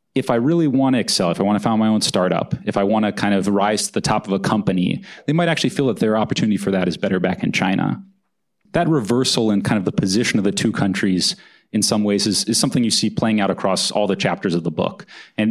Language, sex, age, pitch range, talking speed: English, male, 30-49, 95-120 Hz, 270 wpm